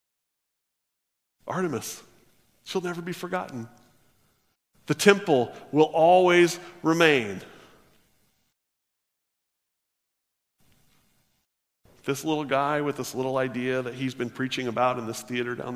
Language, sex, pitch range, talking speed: English, male, 120-150 Hz, 100 wpm